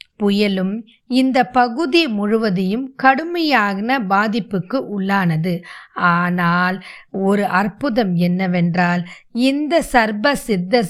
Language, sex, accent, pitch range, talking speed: Tamil, female, native, 190-260 Hz, 75 wpm